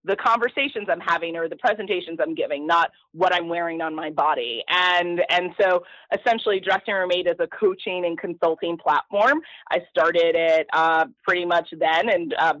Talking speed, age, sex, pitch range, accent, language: 180 wpm, 20-39, female, 170-200 Hz, American, English